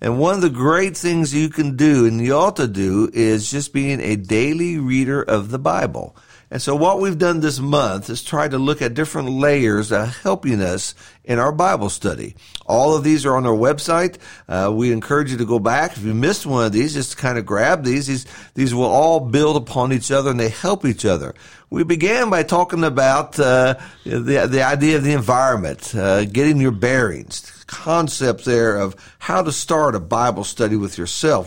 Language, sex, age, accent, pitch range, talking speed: English, male, 50-69, American, 115-150 Hz, 210 wpm